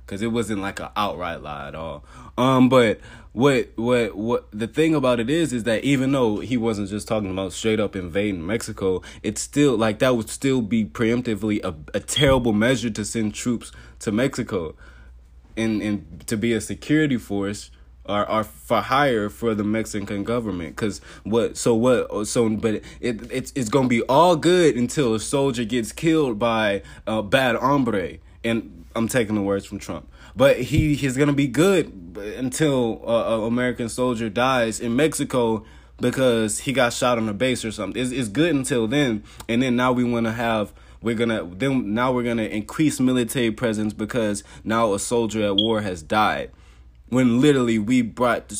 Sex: male